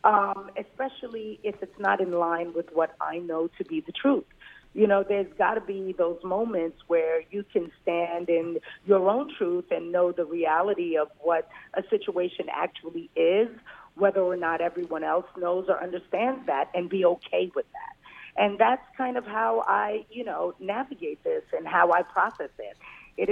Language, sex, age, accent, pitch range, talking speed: English, female, 40-59, American, 170-220 Hz, 185 wpm